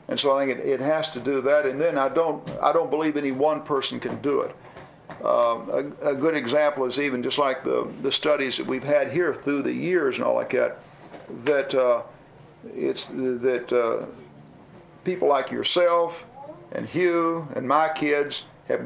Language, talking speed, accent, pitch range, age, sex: English, 190 wpm, American, 125-155 Hz, 50-69, male